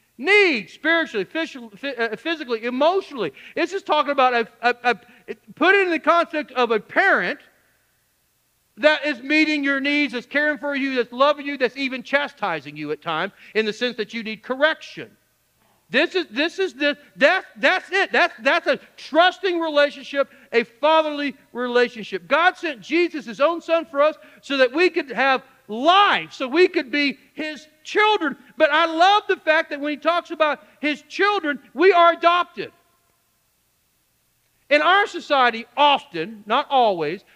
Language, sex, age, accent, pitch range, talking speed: English, male, 50-69, American, 230-320 Hz, 160 wpm